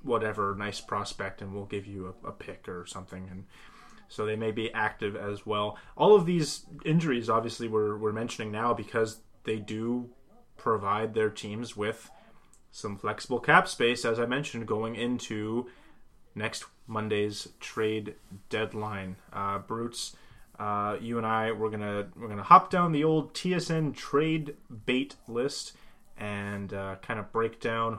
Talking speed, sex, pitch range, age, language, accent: 155 wpm, male, 105-120 Hz, 30-49, English, American